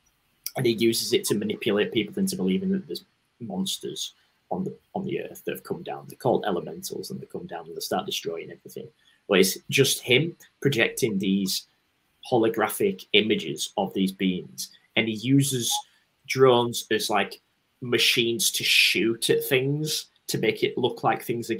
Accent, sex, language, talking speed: British, male, English, 170 wpm